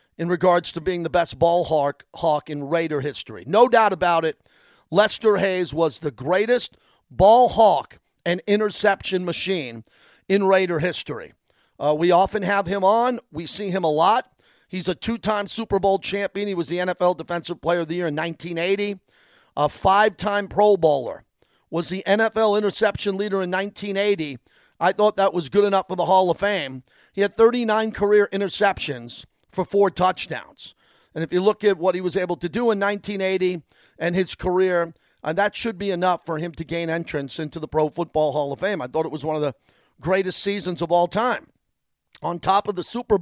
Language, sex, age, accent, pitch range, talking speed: English, male, 40-59, American, 170-205 Hz, 195 wpm